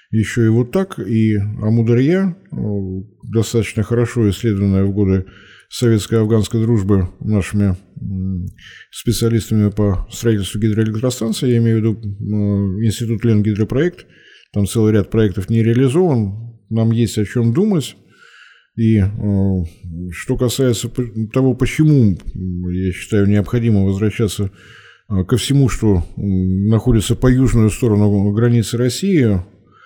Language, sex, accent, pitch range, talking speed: Russian, male, native, 100-120 Hz, 110 wpm